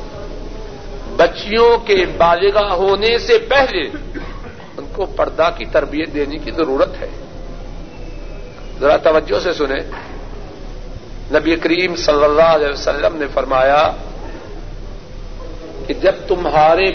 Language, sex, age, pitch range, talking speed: Urdu, male, 60-79, 155-235 Hz, 105 wpm